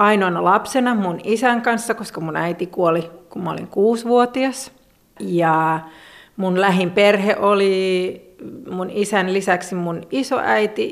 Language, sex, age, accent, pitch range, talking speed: Finnish, female, 40-59, native, 175-225 Hz, 120 wpm